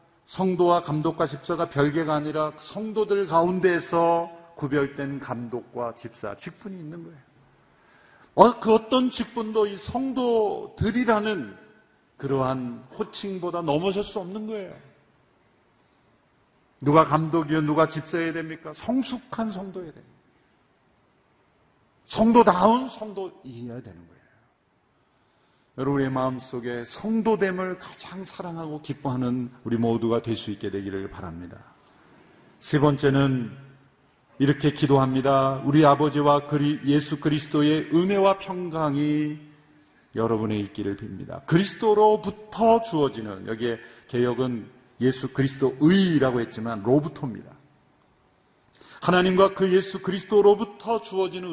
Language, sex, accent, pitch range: Korean, male, native, 130-190 Hz